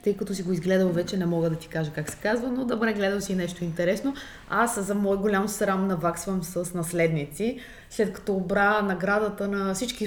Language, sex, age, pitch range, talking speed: Bulgarian, female, 20-39, 175-215 Hz, 210 wpm